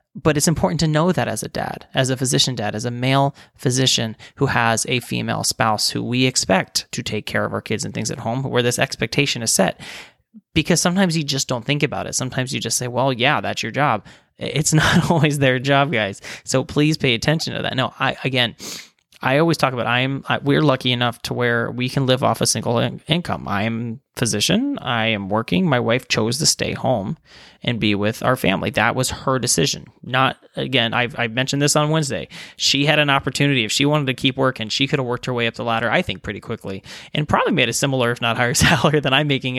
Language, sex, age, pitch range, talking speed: English, male, 20-39, 115-150 Hz, 235 wpm